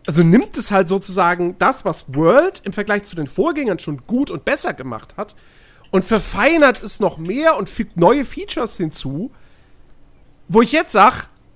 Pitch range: 165-240 Hz